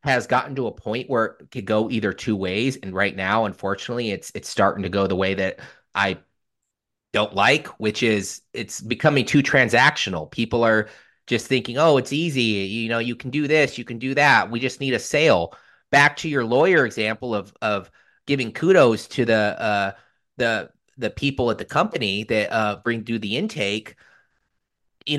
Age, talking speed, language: 30-49, 190 wpm, English